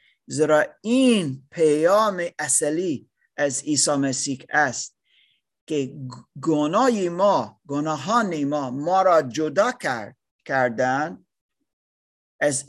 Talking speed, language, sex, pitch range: 90 wpm, Persian, male, 140-200 Hz